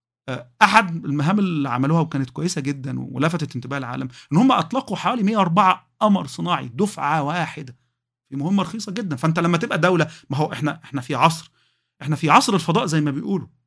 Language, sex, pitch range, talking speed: Arabic, male, 135-175 Hz, 175 wpm